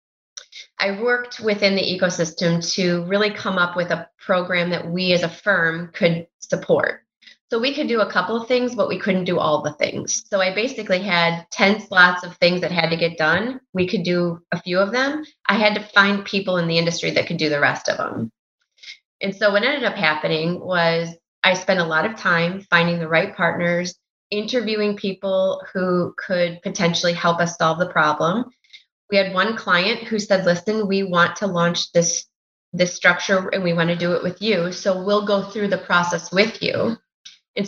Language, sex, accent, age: English, female, American, 30-49